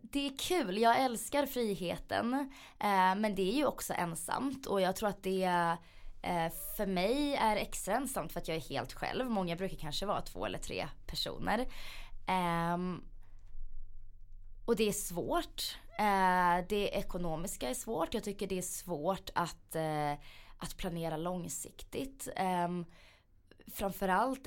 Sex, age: female, 20-39